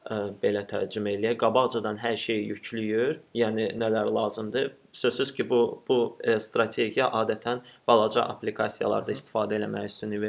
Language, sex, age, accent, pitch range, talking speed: English, male, 30-49, Turkish, 110-125 Hz, 130 wpm